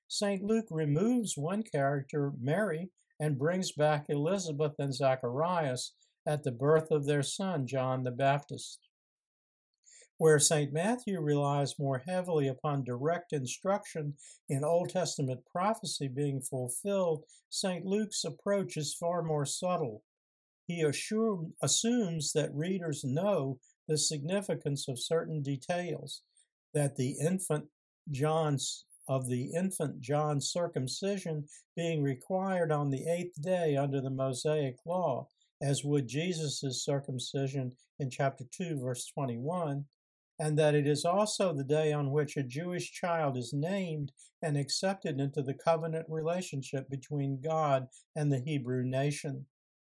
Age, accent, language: 60-79, American, English